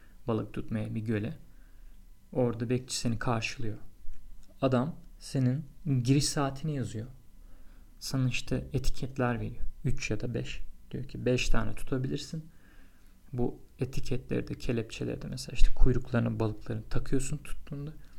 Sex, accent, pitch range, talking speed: male, native, 105-135 Hz, 115 wpm